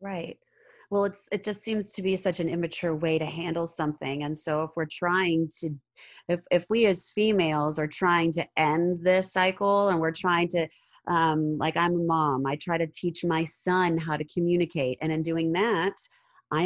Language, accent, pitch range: English, American, 155-180 Hz